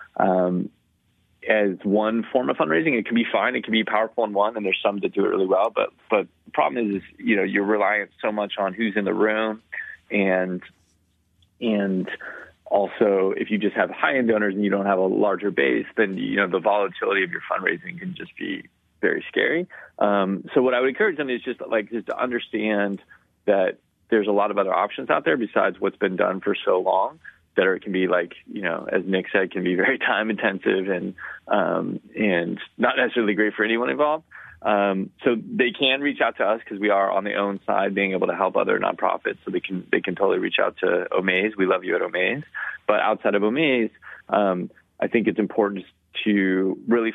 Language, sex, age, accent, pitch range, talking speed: English, male, 30-49, American, 95-110 Hz, 215 wpm